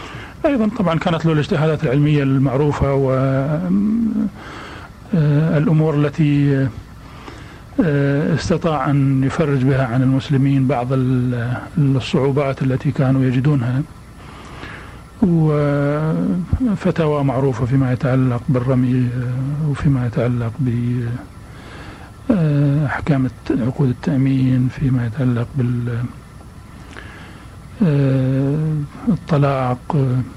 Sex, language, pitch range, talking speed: male, Arabic, 130-150 Hz, 65 wpm